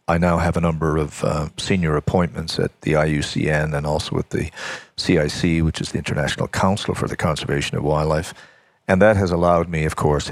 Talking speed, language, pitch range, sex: 200 wpm, English, 80-90 Hz, male